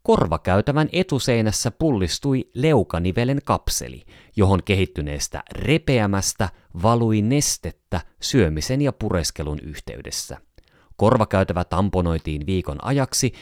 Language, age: Finnish, 30-49